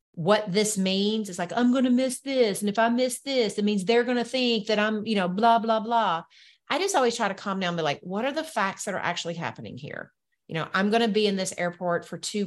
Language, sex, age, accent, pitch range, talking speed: English, female, 40-59, American, 200-260 Hz, 280 wpm